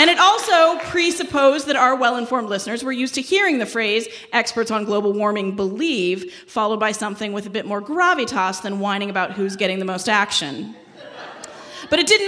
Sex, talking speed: female, 185 wpm